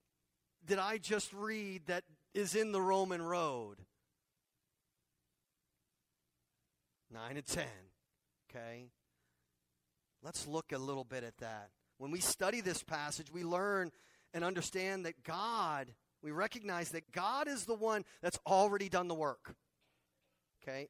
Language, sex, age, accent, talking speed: English, male, 40-59, American, 130 wpm